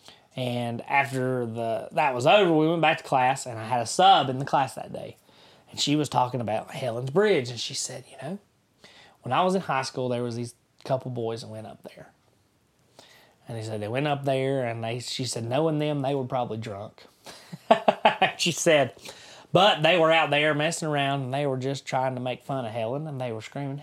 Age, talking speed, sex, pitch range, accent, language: 20-39, 220 wpm, male, 125-160 Hz, American, English